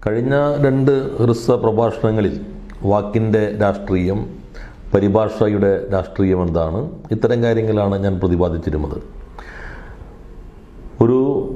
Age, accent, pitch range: 40-59, native, 95-115 Hz